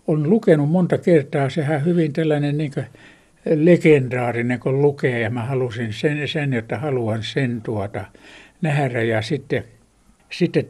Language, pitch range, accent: Finnish, 120-165 Hz, native